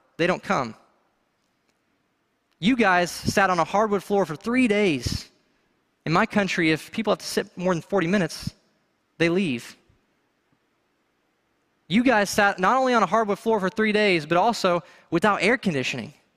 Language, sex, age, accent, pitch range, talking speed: English, male, 20-39, American, 160-205 Hz, 160 wpm